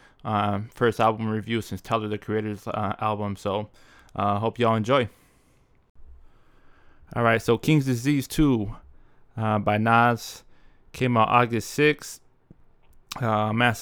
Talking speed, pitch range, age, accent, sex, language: 130 wpm, 105-120 Hz, 20-39, American, male, English